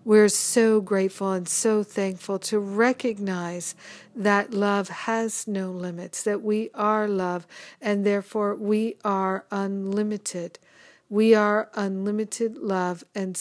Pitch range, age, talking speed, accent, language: 185-215 Hz, 50-69, 120 wpm, American, English